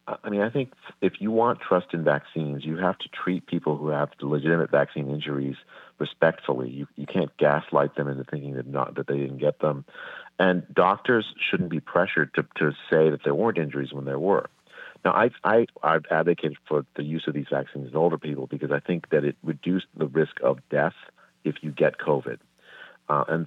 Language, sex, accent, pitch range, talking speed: English, male, American, 70-90 Hz, 205 wpm